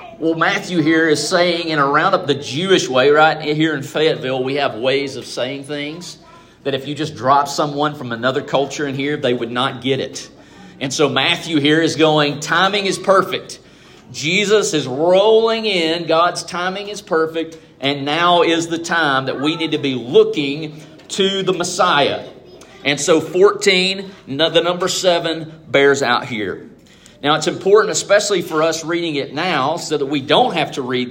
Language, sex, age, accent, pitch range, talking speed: English, male, 40-59, American, 140-170 Hz, 180 wpm